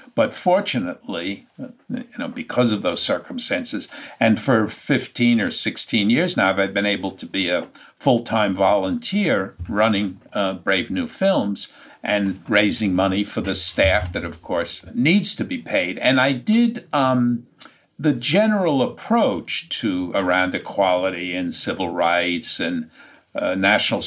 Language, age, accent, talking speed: English, 60-79, American, 140 wpm